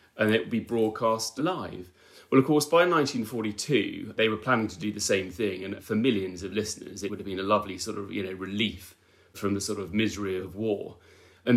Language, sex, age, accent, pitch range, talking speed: English, male, 30-49, British, 100-150 Hz, 225 wpm